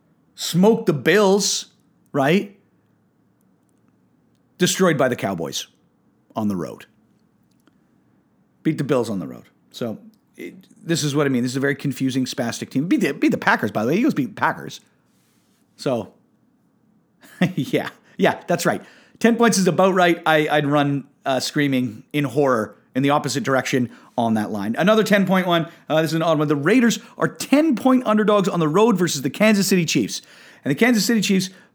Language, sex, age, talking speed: English, male, 40-59, 175 wpm